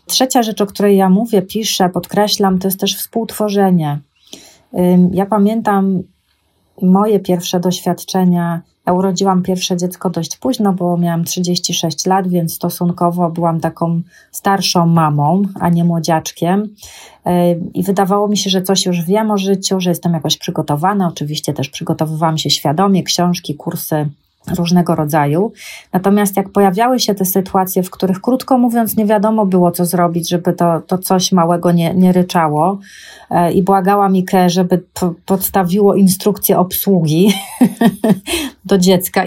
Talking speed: 140 wpm